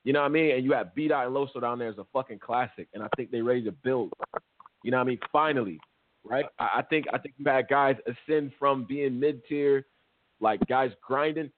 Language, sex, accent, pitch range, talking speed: English, male, American, 125-165 Hz, 235 wpm